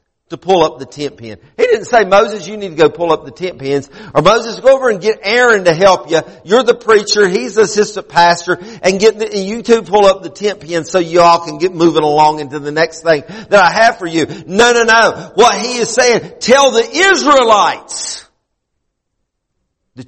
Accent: American